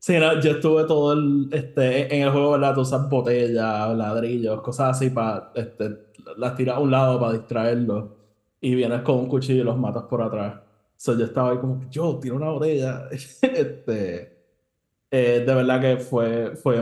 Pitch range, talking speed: 110-135 Hz, 190 wpm